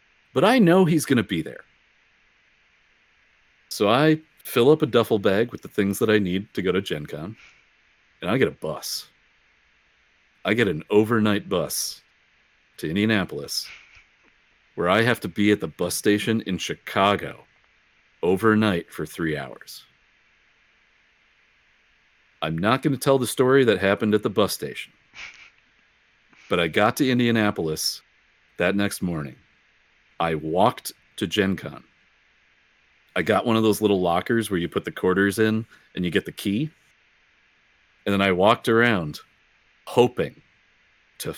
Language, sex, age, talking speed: English, male, 40-59, 150 wpm